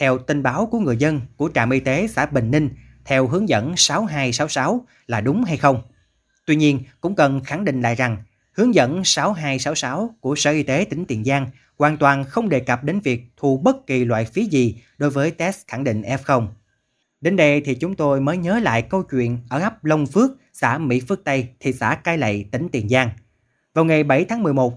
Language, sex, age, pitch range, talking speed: Vietnamese, male, 20-39, 125-160 Hz, 215 wpm